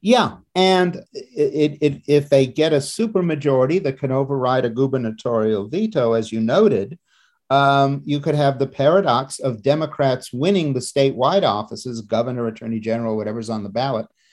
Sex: male